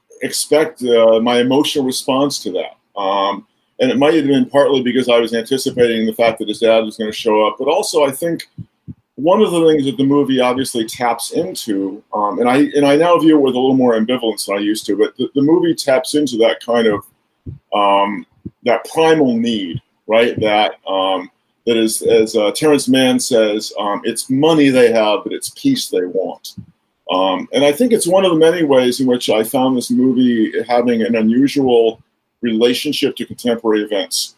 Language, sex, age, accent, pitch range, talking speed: English, male, 40-59, American, 115-145 Hz, 200 wpm